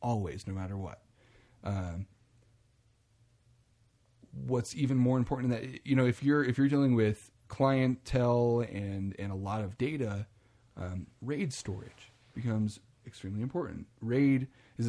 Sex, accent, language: male, American, English